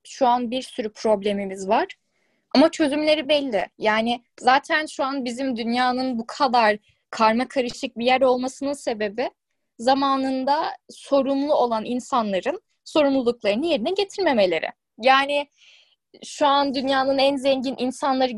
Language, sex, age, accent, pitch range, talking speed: Turkish, female, 10-29, native, 230-285 Hz, 120 wpm